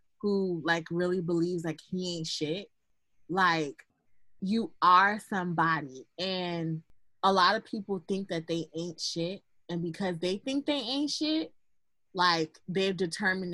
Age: 20-39